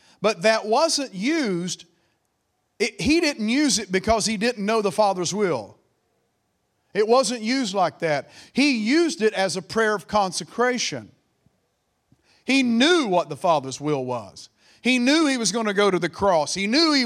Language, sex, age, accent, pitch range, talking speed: English, male, 40-59, American, 190-245 Hz, 170 wpm